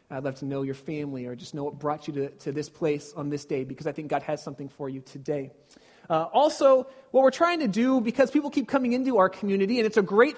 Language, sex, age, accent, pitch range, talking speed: English, male, 30-49, American, 190-240 Hz, 265 wpm